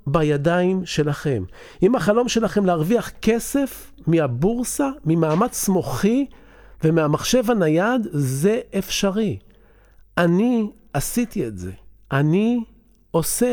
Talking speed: 90 wpm